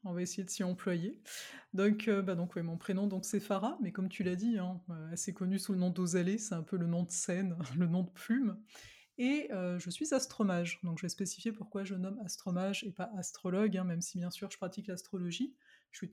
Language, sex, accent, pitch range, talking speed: French, female, French, 180-220 Hz, 240 wpm